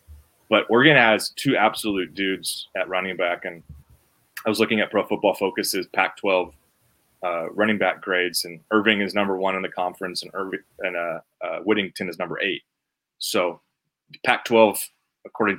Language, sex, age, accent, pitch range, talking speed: English, male, 20-39, American, 90-115 Hz, 160 wpm